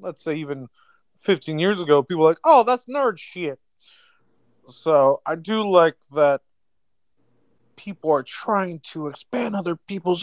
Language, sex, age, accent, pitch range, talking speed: English, male, 30-49, American, 130-180 Hz, 145 wpm